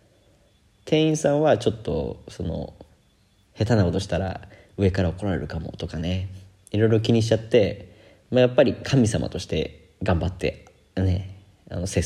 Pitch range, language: 90-105 Hz, Japanese